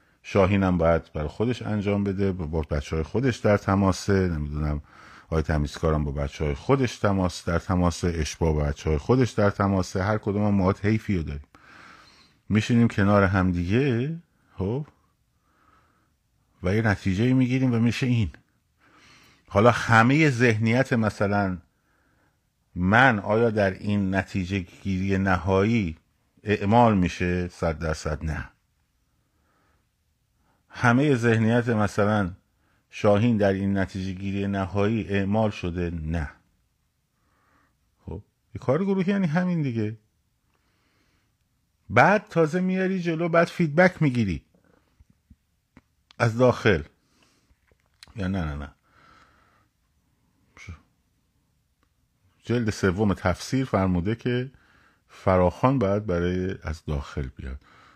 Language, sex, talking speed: Persian, male, 110 wpm